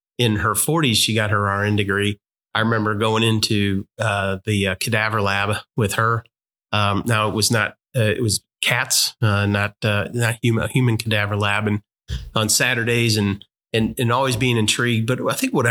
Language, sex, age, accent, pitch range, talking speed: English, male, 30-49, American, 105-120 Hz, 185 wpm